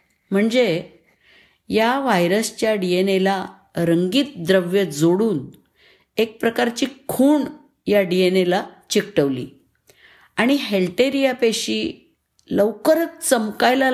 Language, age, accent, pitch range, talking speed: Marathi, 50-69, native, 180-240 Hz, 90 wpm